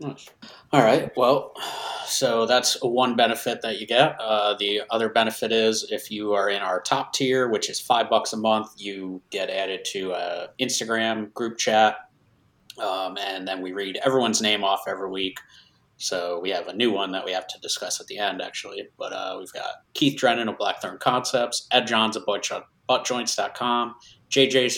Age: 30-49